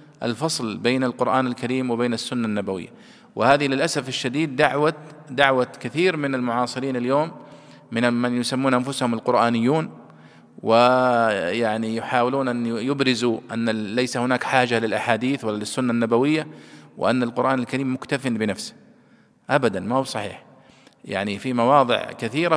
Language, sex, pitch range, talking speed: Arabic, male, 120-175 Hz, 120 wpm